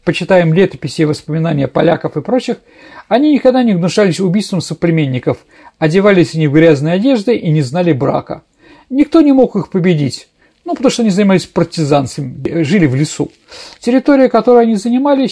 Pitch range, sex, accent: 160-235 Hz, male, native